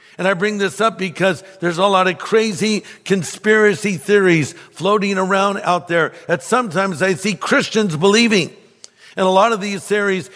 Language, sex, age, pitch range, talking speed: English, male, 60-79, 145-195 Hz, 170 wpm